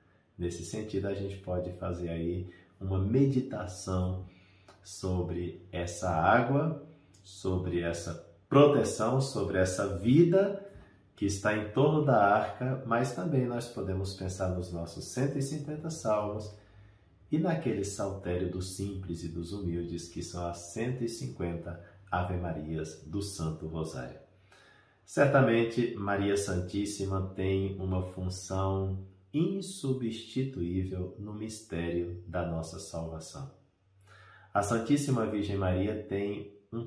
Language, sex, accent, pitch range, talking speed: Portuguese, male, Brazilian, 90-115 Hz, 110 wpm